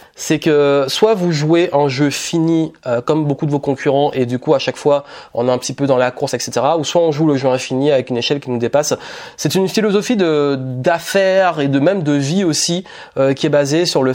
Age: 20-39